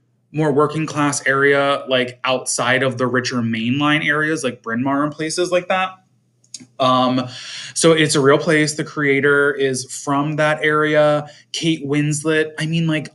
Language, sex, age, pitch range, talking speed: English, male, 20-39, 125-160 Hz, 160 wpm